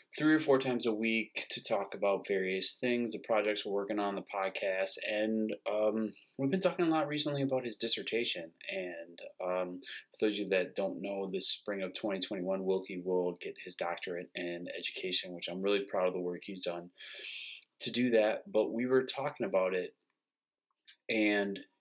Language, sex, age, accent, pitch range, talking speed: English, male, 30-49, American, 90-125 Hz, 185 wpm